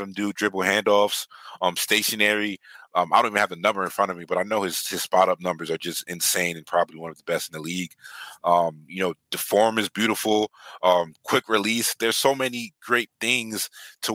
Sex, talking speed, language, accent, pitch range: male, 225 wpm, English, American, 90-105 Hz